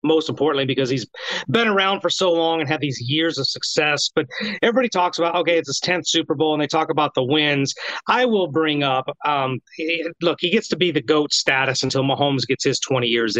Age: 30-49